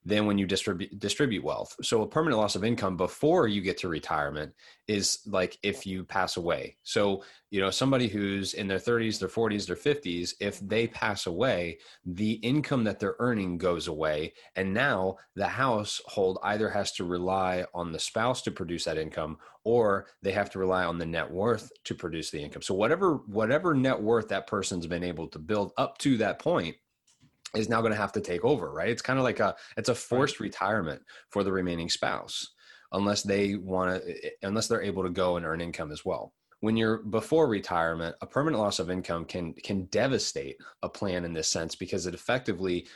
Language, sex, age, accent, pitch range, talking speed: English, male, 30-49, American, 90-110 Hz, 200 wpm